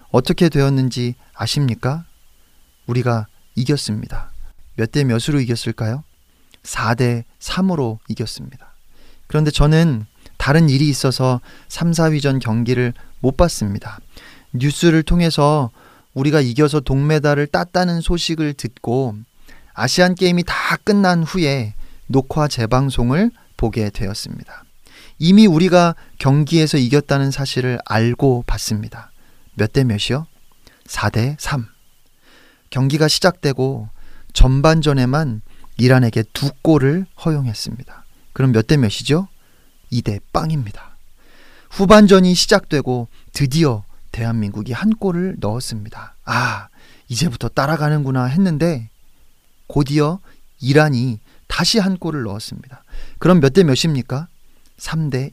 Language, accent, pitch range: Korean, native, 115-160 Hz